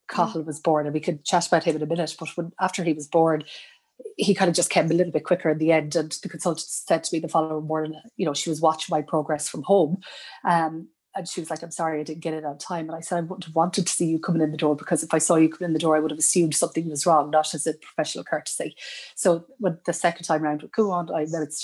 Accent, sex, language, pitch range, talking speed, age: Irish, female, English, 155-175 Hz, 295 wpm, 30-49